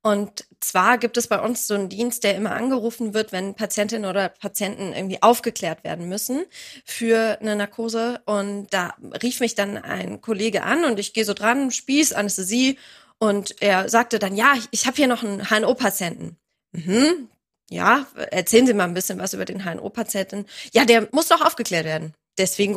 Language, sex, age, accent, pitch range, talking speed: German, female, 20-39, German, 200-245 Hz, 180 wpm